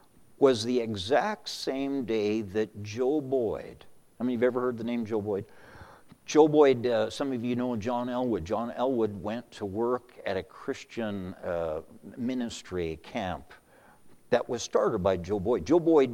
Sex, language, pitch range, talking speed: male, English, 105-130 Hz, 180 wpm